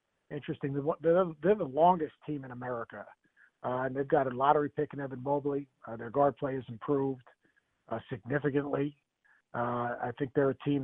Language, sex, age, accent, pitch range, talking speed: English, male, 50-69, American, 125-155 Hz, 170 wpm